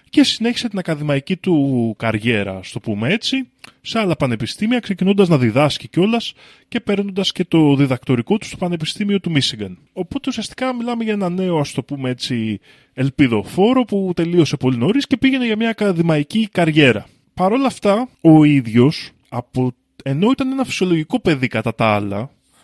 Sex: male